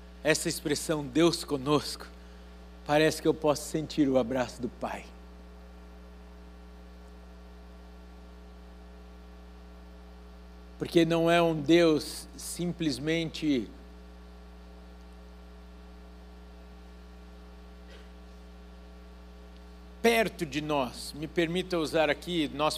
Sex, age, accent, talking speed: male, 60-79, Brazilian, 70 wpm